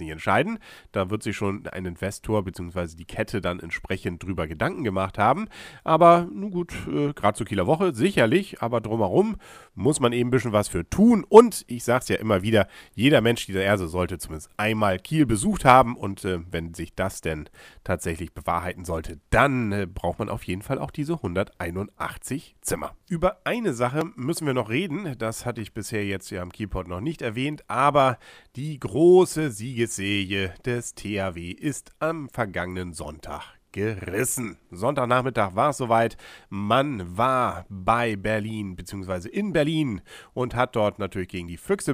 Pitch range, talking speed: 95-135 Hz, 175 wpm